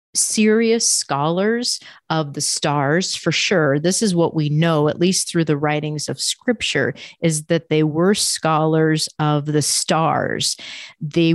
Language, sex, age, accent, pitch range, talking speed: English, female, 40-59, American, 155-200 Hz, 150 wpm